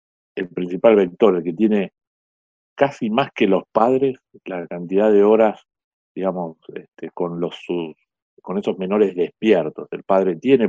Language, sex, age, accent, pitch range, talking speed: Spanish, male, 50-69, Argentinian, 85-110 Hz, 145 wpm